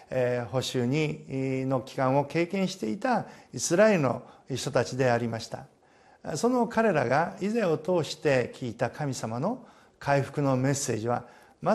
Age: 50-69